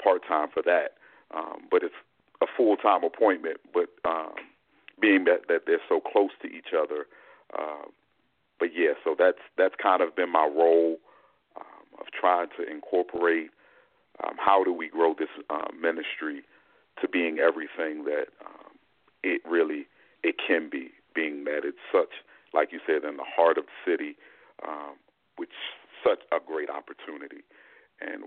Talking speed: 155 wpm